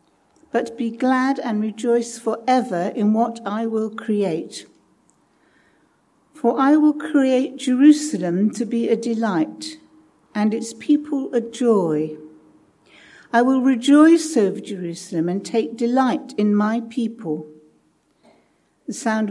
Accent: British